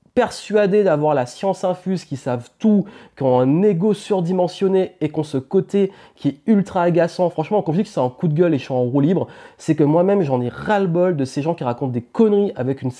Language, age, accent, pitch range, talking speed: French, 30-49, French, 140-185 Hz, 245 wpm